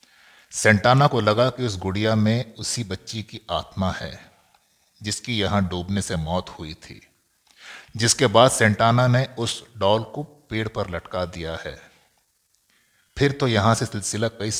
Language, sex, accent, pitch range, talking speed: Hindi, male, native, 95-110 Hz, 150 wpm